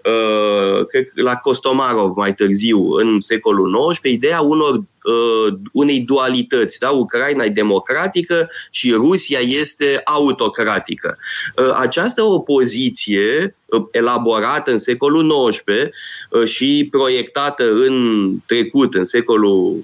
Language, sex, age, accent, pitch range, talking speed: Romanian, male, 20-39, native, 115-150 Hz, 95 wpm